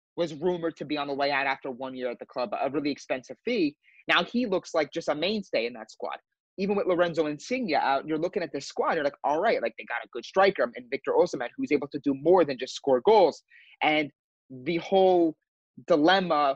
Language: English